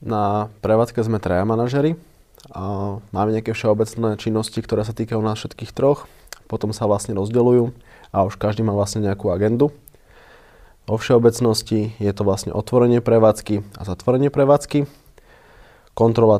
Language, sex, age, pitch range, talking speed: Slovak, male, 20-39, 100-115 Hz, 140 wpm